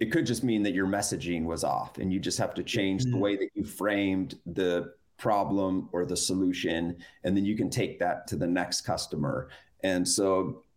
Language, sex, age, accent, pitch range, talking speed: English, male, 30-49, American, 95-115 Hz, 205 wpm